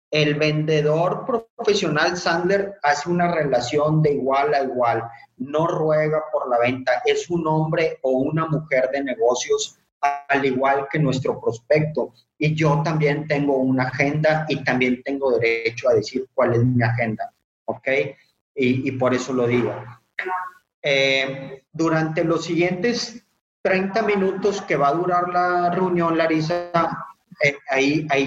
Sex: male